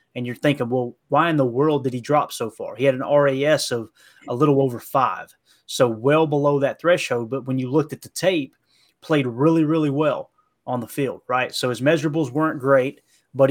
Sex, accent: male, American